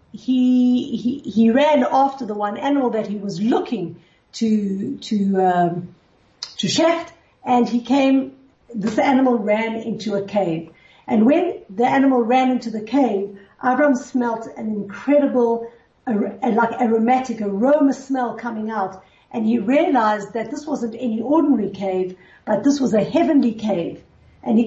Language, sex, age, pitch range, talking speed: English, female, 50-69, 215-270 Hz, 150 wpm